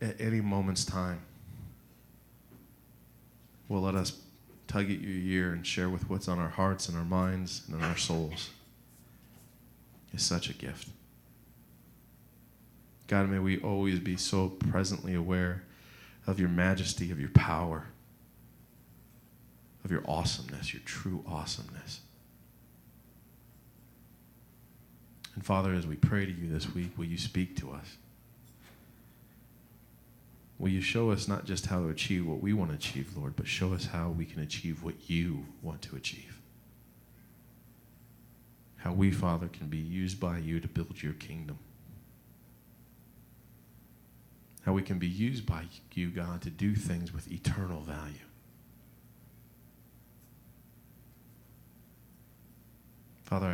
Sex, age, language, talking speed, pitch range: male, 40-59, English, 130 wpm, 80-95 Hz